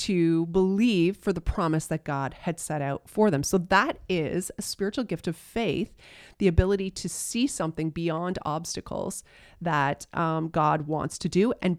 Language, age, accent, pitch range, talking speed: English, 30-49, American, 155-195 Hz, 175 wpm